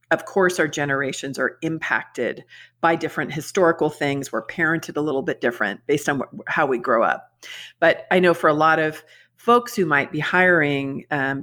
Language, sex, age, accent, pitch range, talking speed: English, female, 50-69, American, 140-175 Hz, 190 wpm